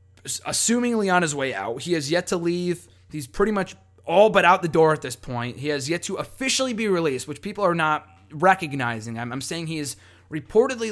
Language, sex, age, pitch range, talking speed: English, male, 20-39, 125-190 Hz, 215 wpm